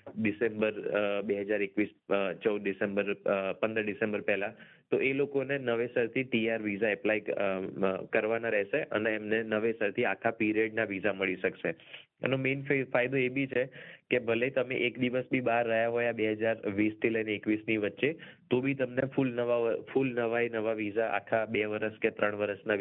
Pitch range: 105-125 Hz